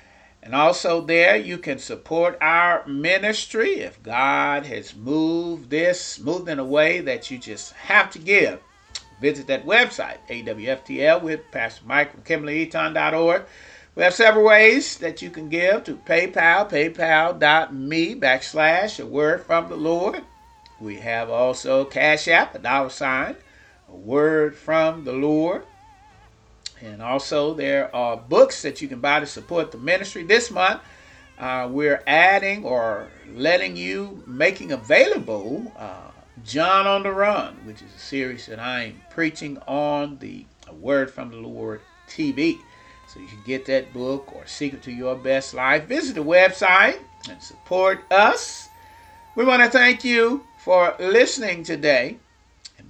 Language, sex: English, male